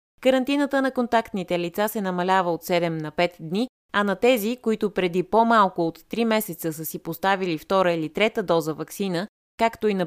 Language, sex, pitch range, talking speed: Bulgarian, female, 170-225 Hz, 185 wpm